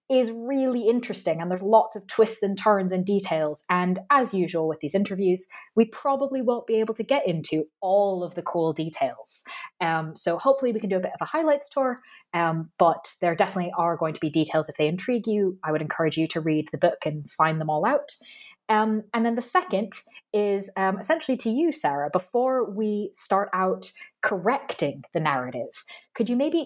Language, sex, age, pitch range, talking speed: English, female, 20-39, 165-220 Hz, 205 wpm